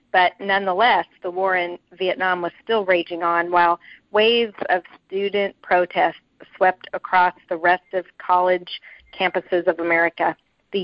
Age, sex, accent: 50-69, female, American